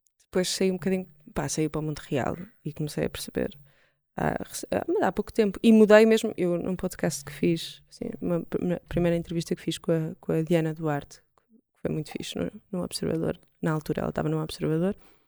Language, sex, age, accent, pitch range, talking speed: Portuguese, female, 20-39, Brazilian, 175-220 Hz, 205 wpm